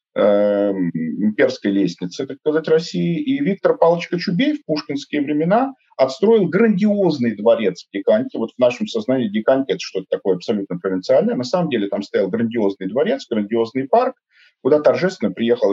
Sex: male